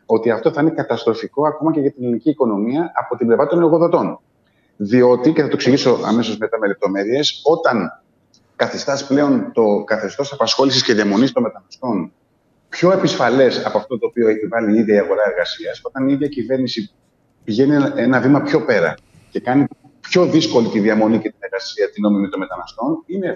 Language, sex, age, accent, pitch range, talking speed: Greek, male, 30-49, native, 115-175 Hz, 180 wpm